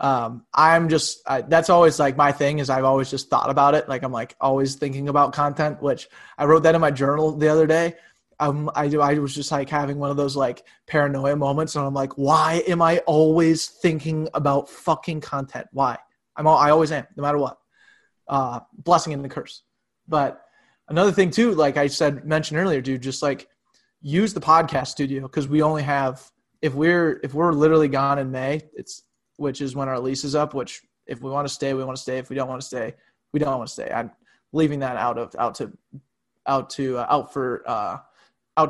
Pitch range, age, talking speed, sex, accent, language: 135-155 Hz, 20-39, 220 wpm, male, American, English